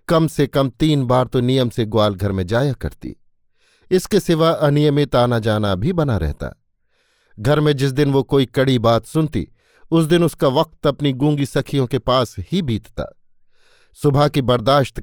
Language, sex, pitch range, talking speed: Hindi, male, 120-150 Hz, 175 wpm